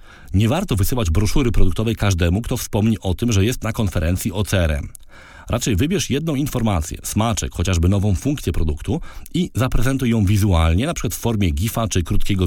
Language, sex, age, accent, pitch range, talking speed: Polish, male, 40-59, native, 90-120 Hz, 175 wpm